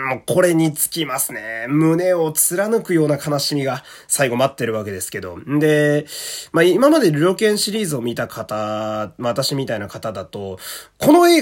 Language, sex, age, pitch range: Japanese, male, 20-39, 135-225 Hz